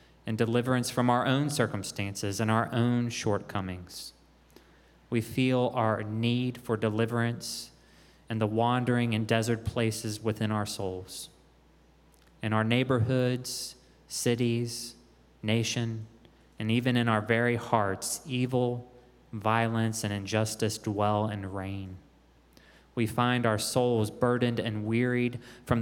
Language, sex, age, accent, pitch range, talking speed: English, male, 20-39, American, 105-125 Hz, 120 wpm